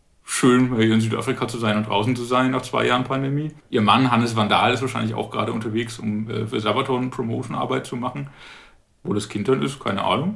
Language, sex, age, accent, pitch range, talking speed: German, male, 40-59, German, 110-135 Hz, 215 wpm